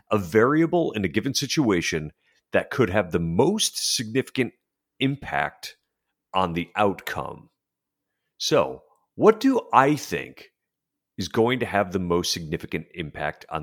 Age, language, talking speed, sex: 40-59, English, 130 wpm, male